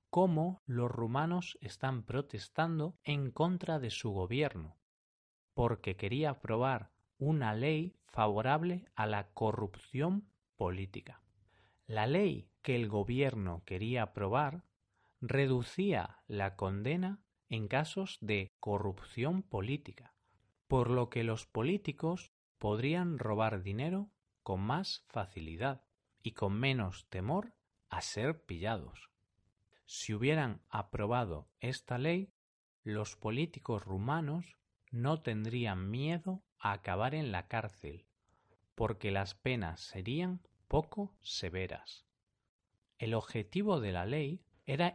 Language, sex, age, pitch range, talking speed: Spanish, male, 40-59, 105-155 Hz, 110 wpm